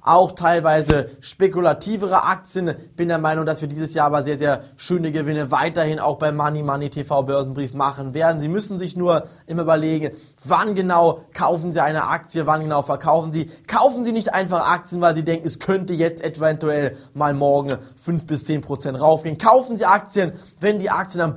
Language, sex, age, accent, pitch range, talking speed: German, male, 20-39, German, 150-180 Hz, 190 wpm